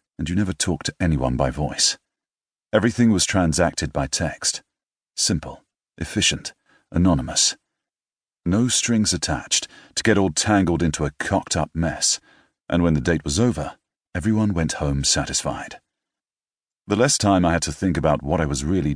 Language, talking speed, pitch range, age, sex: English, 155 wpm, 75-105 Hz, 40-59, male